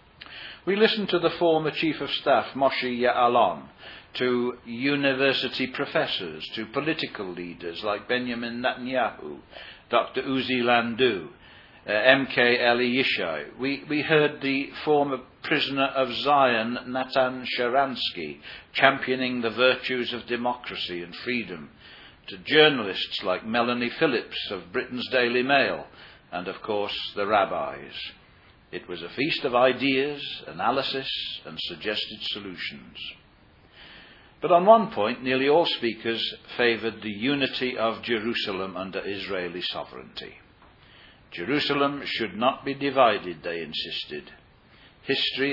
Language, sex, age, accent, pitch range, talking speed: English, male, 60-79, British, 115-135 Hz, 120 wpm